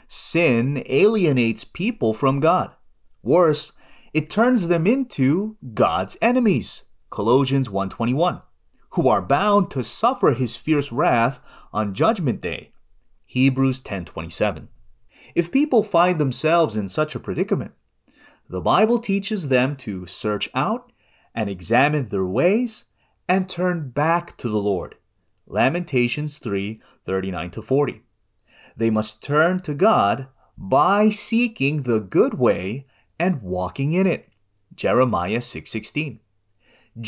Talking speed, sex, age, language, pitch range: 115 wpm, male, 30-49, English, 110-185 Hz